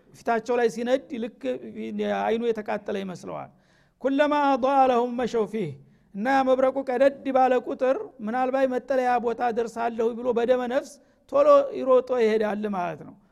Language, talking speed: Amharic, 140 wpm